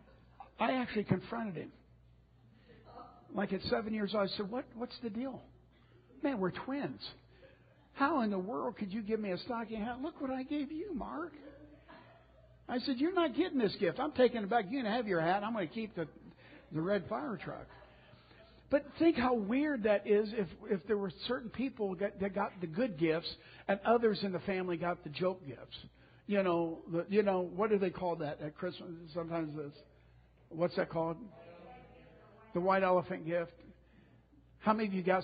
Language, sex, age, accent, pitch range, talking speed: English, male, 60-79, American, 170-250 Hz, 190 wpm